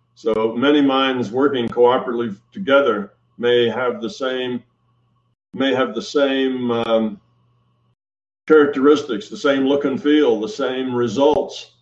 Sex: male